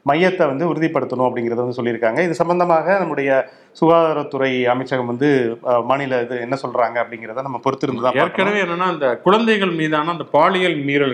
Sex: male